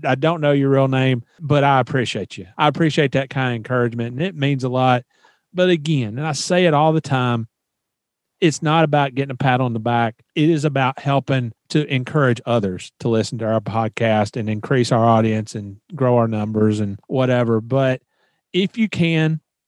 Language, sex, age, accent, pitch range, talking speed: English, male, 40-59, American, 120-145 Hz, 200 wpm